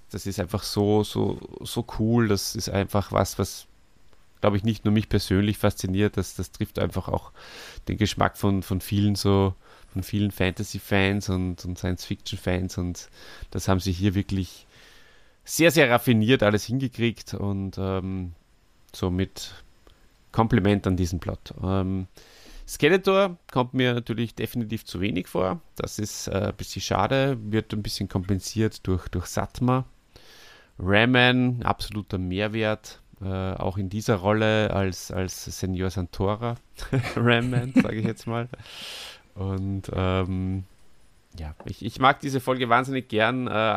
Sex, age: male, 30-49